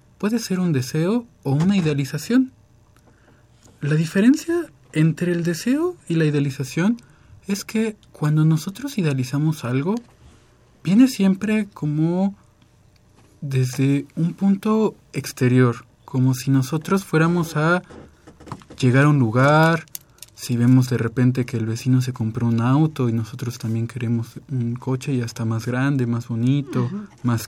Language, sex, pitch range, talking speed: Spanish, male, 125-180 Hz, 135 wpm